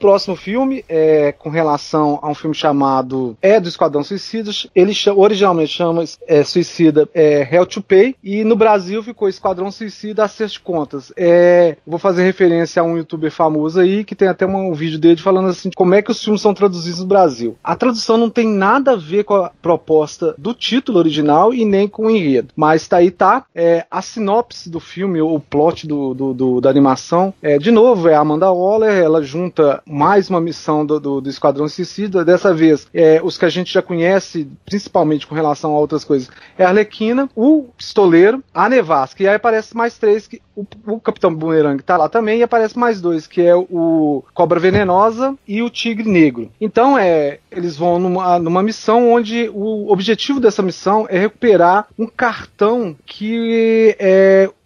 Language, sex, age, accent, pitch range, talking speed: Portuguese, male, 30-49, Brazilian, 160-215 Hz, 195 wpm